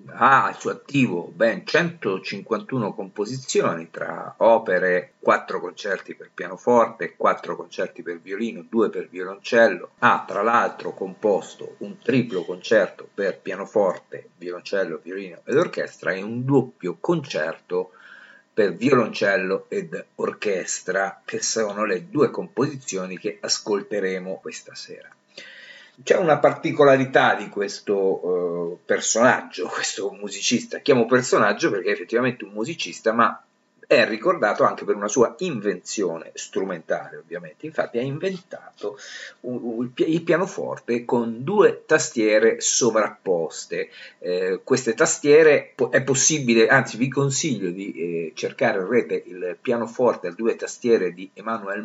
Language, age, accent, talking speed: Italian, 50-69, native, 125 wpm